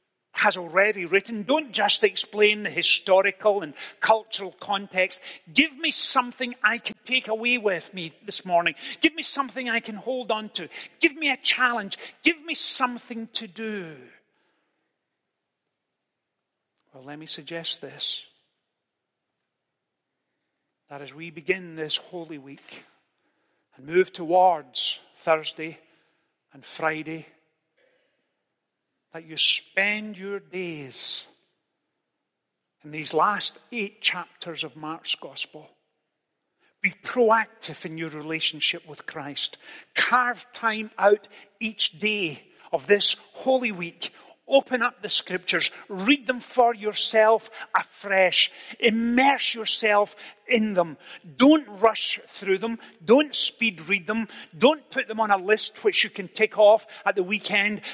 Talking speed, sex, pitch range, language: 125 wpm, male, 170-230 Hz, English